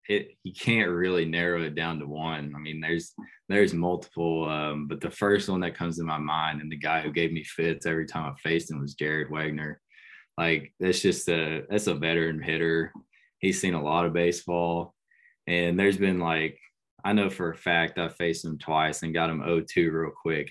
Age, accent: 20-39, American